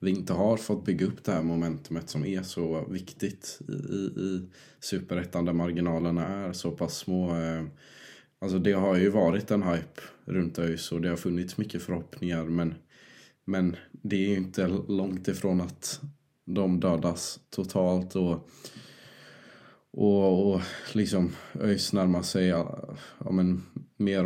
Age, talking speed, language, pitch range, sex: 20-39, 145 wpm, Swedish, 85-100 Hz, male